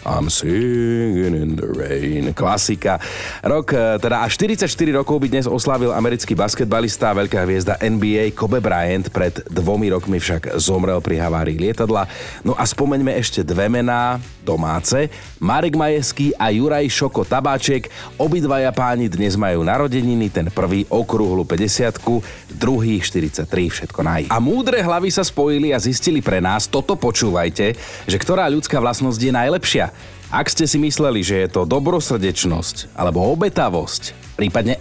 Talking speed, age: 145 wpm, 30-49